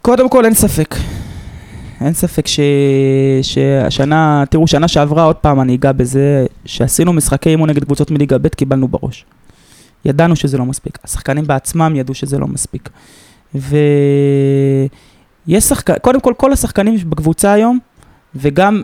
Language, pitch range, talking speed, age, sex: Hebrew, 140-175 Hz, 135 wpm, 20-39, male